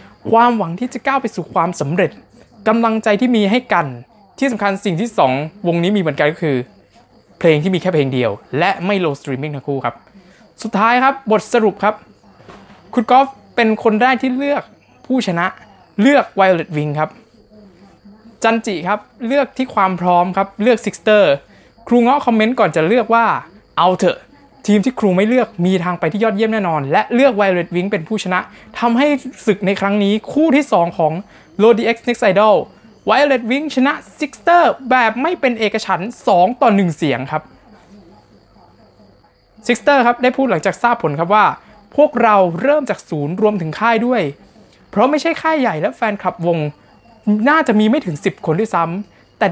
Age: 20-39